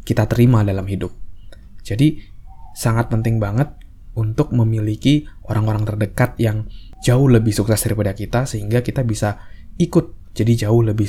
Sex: male